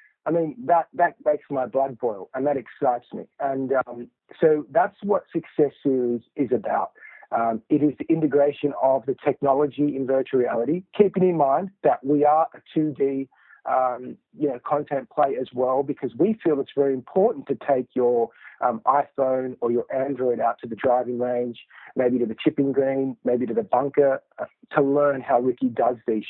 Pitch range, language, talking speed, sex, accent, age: 130-150 Hz, English, 185 wpm, male, Australian, 40-59